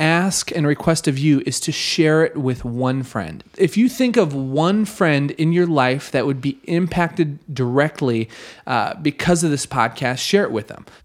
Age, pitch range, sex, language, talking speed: 30-49, 125-155 Hz, male, English, 190 wpm